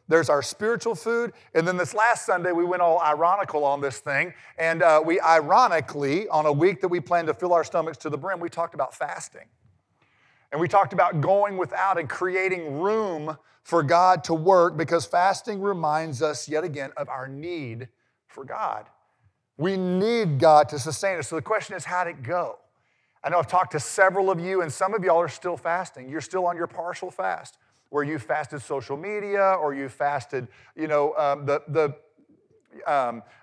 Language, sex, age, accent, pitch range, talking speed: English, male, 40-59, American, 140-180 Hz, 195 wpm